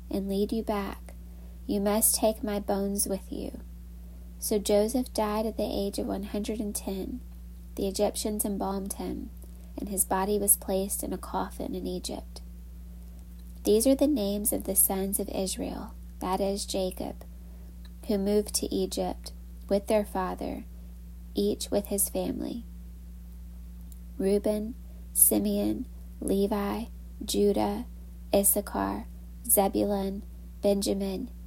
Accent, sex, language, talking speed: American, female, English, 120 wpm